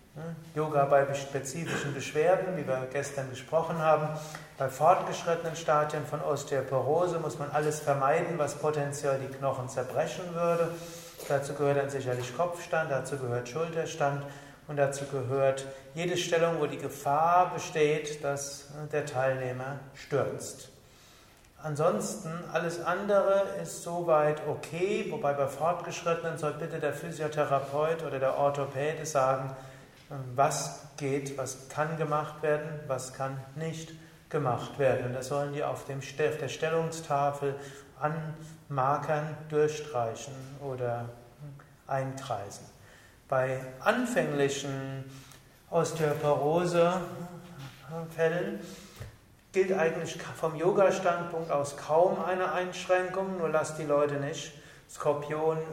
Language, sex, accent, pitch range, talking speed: German, male, German, 140-165 Hz, 110 wpm